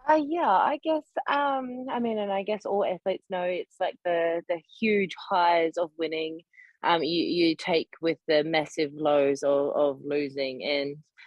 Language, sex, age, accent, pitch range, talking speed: English, female, 20-39, Australian, 150-195 Hz, 175 wpm